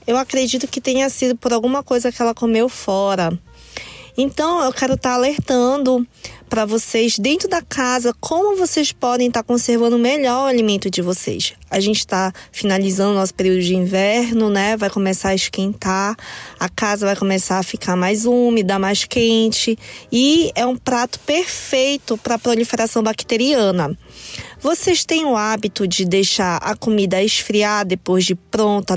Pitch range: 195-250 Hz